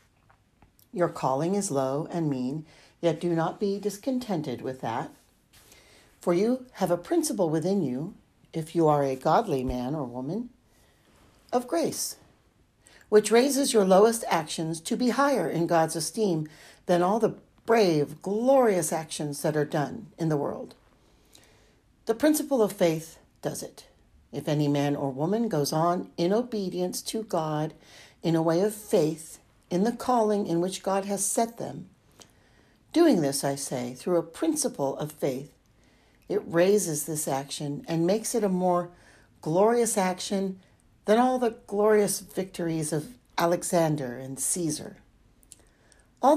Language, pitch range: English, 150-210 Hz